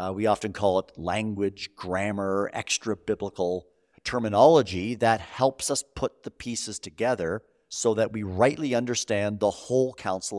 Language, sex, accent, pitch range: English, male, American, 100-130 Hz